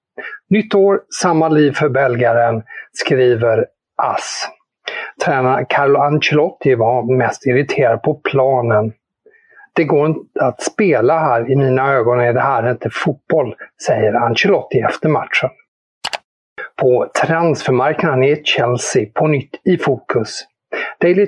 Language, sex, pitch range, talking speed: English, male, 130-165 Hz, 120 wpm